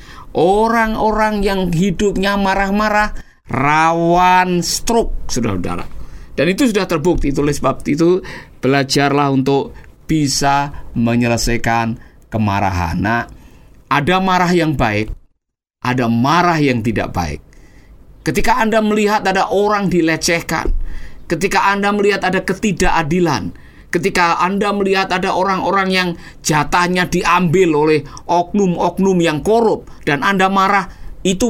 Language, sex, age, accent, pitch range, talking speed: Indonesian, male, 50-69, native, 150-200 Hz, 105 wpm